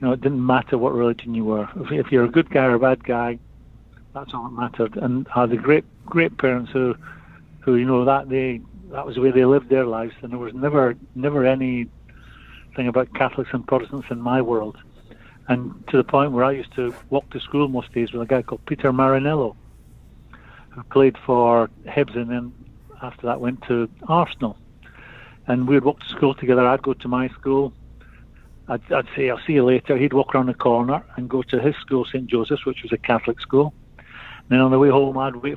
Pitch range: 120-140 Hz